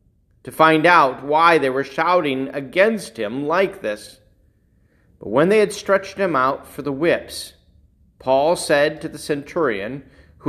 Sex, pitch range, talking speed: male, 115-180 Hz, 155 wpm